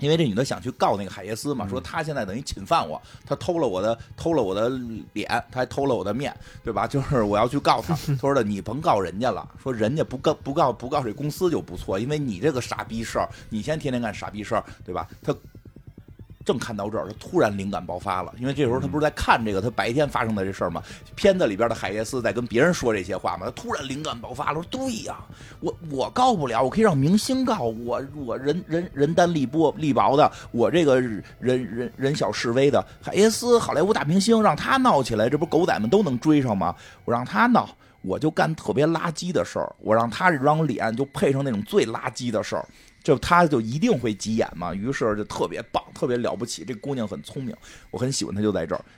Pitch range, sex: 110-150 Hz, male